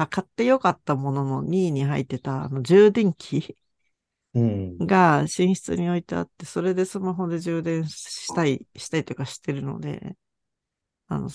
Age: 50-69